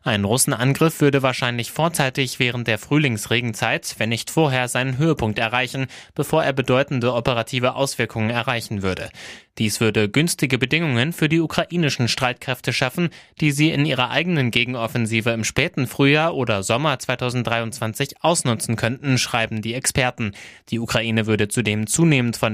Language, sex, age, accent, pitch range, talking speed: German, male, 20-39, German, 110-135 Hz, 140 wpm